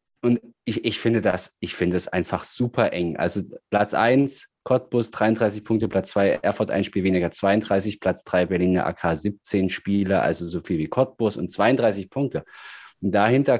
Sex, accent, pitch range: male, German, 95-115 Hz